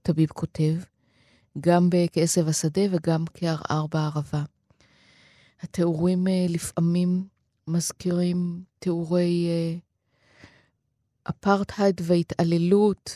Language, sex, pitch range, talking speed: Hebrew, female, 150-185 Hz, 65 wpm